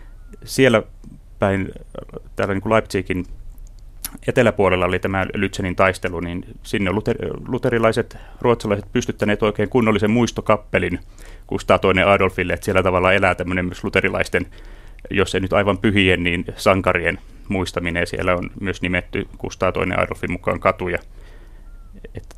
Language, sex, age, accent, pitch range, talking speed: Finnish, male, 30-49, native, 90-110 Hz, 130 wpm